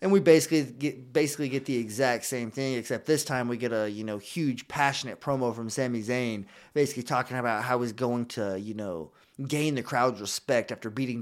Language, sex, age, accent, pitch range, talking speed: English, male, 20-39, American, 110-135 Hz, 210 wpm